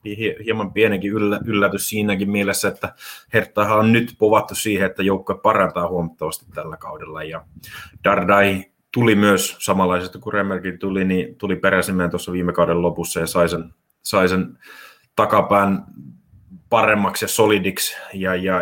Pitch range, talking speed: 90-105 Hz, 140 wpm